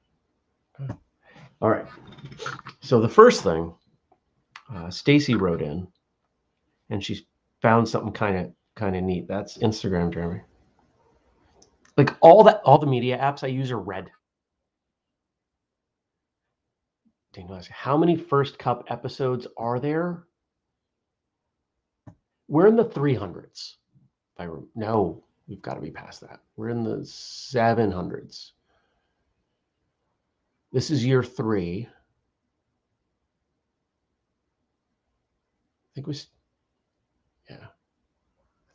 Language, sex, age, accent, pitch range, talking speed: English, male, 40-59, American, 95-145 Hz, 105 wpm